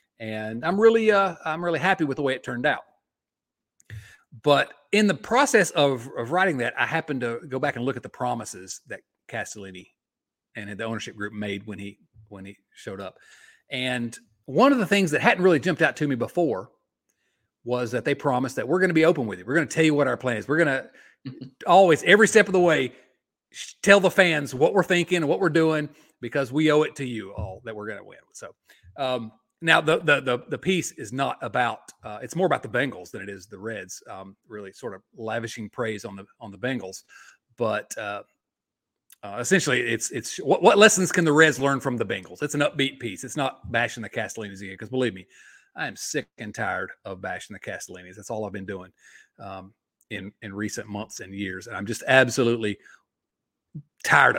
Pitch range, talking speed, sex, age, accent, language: 110-165 Hz, 215 wpm, male, 40-59, American, English